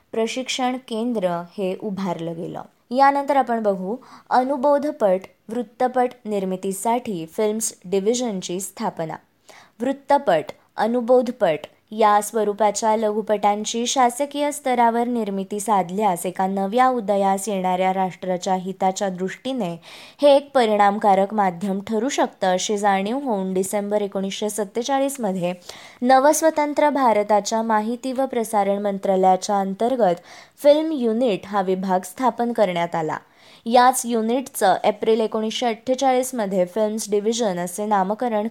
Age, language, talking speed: 20-39, Marathi, 100 wpm